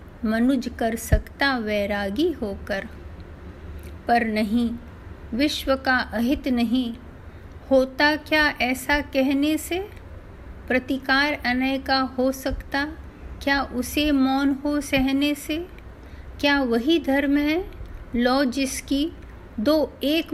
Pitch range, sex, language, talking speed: 230-275 Hz, female, Hindi, 105 wpm